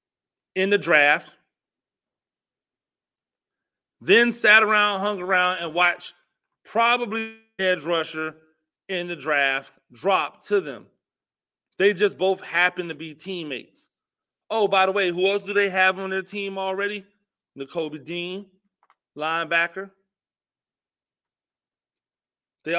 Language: English